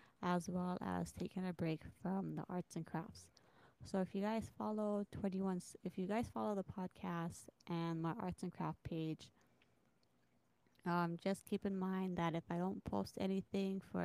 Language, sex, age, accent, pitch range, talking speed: English, female, 20-39, American, 170-195 Hz, 170 wpm